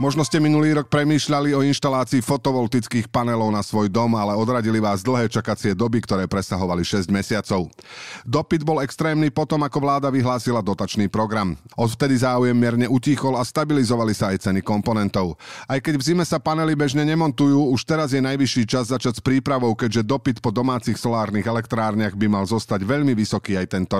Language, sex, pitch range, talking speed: Slovak, male, 110-145 Hz, 175 wpm